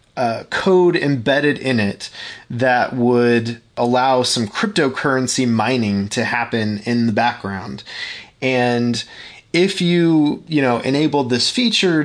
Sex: male